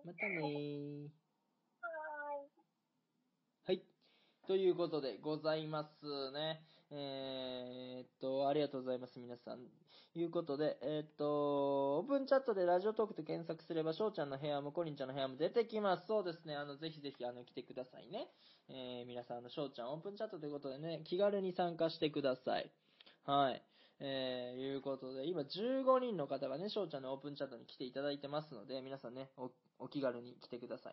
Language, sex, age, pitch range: Japanese, male, 20-39, 140-200 Hz